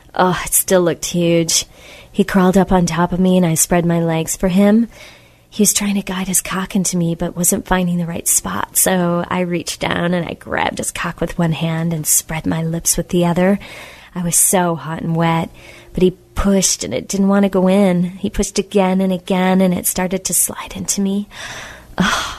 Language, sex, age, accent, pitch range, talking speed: English, female, 30-49, American, 170-190 Hz, 220 wpm